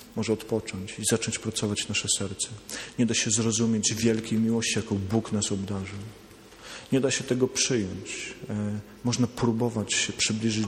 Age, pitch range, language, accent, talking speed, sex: 40-59, 110-130 Hz, Polish, native, 145 wpm, male